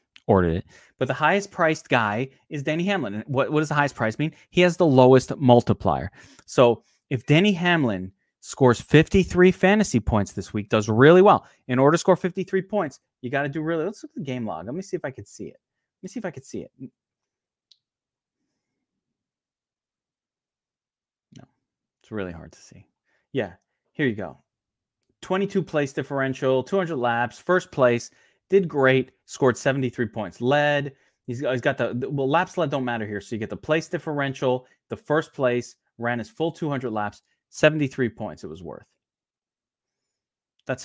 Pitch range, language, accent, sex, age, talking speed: 120-155 Hz, English, American, male, 30-49, 180 wpm